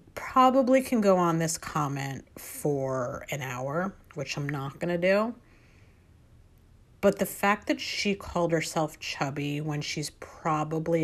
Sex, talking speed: female, 135 wpm